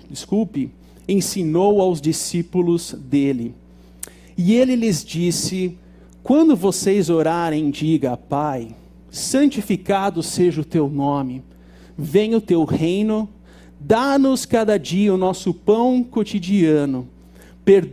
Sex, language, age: male, Portuguese, 50-69